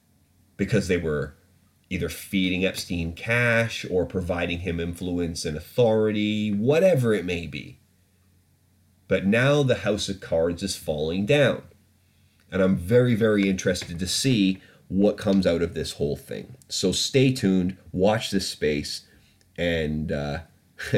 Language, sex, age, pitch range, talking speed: English, male, 30-49, 85-105 Hz, 135 wpm